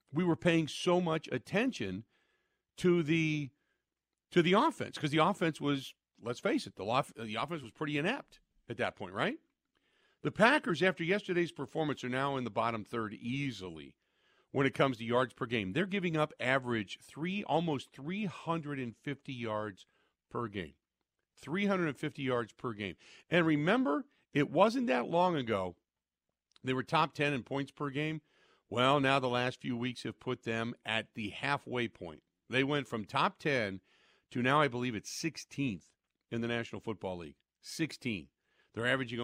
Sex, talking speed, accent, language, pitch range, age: male, 165 wpm, American, English, 115-170 Hz, 50-69